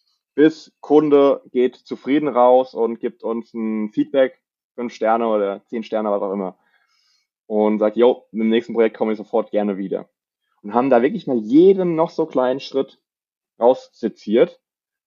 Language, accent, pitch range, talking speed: German, German, 110-145 Hz, 165 wpm